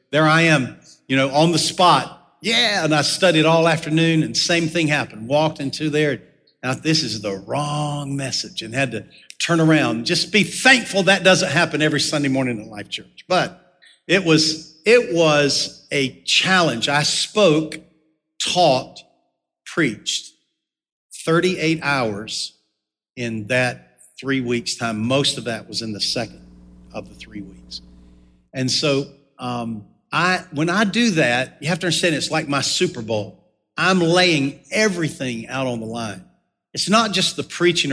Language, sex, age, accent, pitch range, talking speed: English, male, 50-69, American, 125-165 Hz, 160 wpm